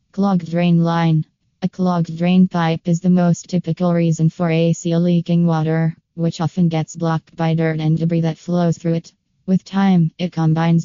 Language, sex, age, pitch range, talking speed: English, female, 20-39, 160-175 Hz, 175 wpm